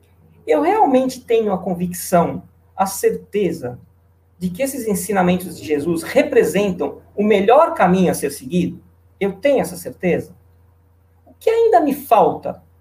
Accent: Brazilian